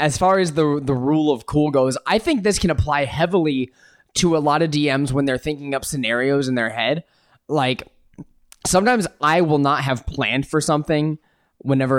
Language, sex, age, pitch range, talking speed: English, male, 20-39, 125-150 Hz, 190 wpm